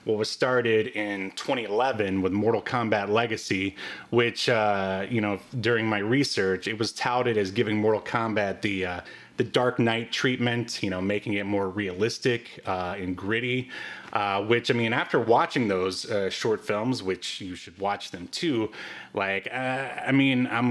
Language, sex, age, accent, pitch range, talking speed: English, male, 30-49, American, 100-130 Hz, 175 wpm